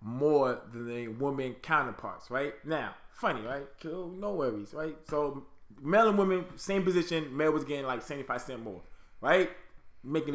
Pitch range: 135-160 Hz